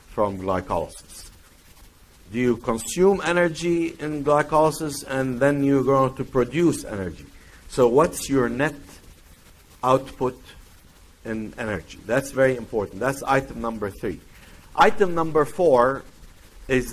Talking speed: 115 wpm